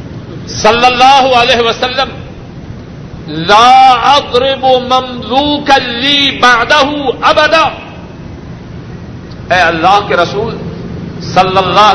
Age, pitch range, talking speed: 60-79, 170-250 Hz, 70 wpm